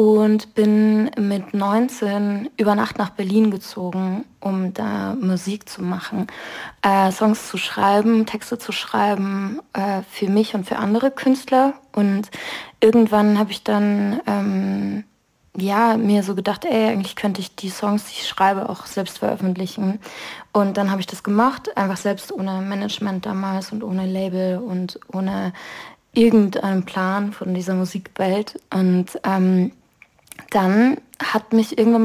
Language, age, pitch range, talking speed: German, 20-39, 190-220 Hz, 145 wpm